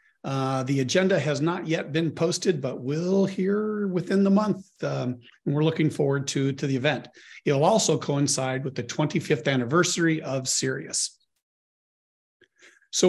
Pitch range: 145-180 Hz